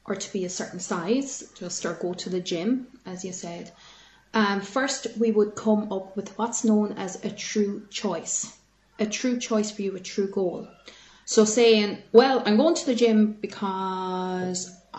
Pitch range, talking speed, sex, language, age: 190-225 Hz, 180 wpm, female, English, 30-49